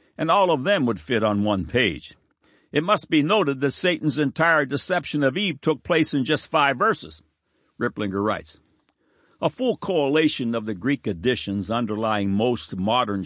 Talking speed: 170 wpm